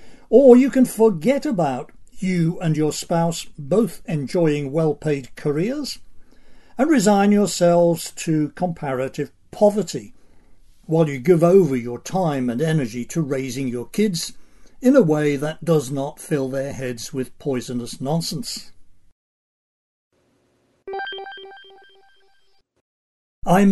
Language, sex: English, male